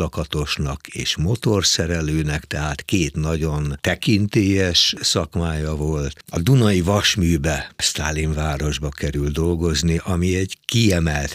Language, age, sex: Hungarian, 60-79, male